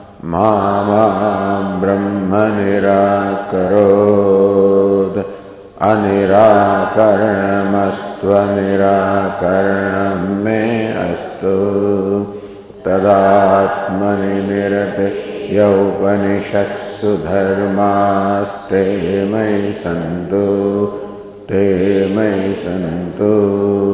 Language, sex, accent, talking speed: English, male, Indian, 45 wpm